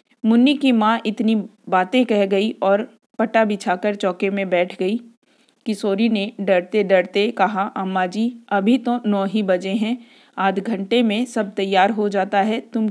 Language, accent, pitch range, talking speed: Hindi, native, 195-235 Hz, 165 wpm